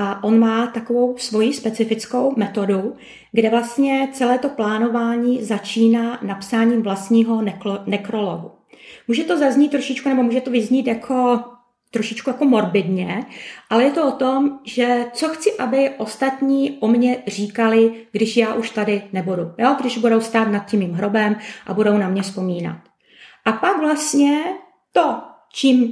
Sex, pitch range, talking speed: female, 215-265 Hz, 150 wpm